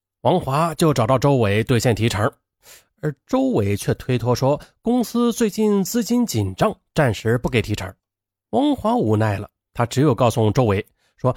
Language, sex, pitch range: Chinese, male, 105-175 Hz